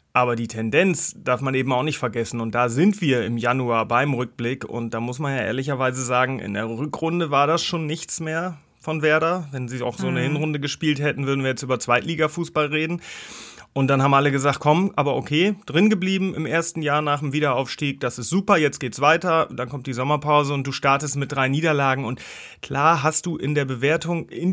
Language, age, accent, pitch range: German, 30-49, German, 125-155 Hz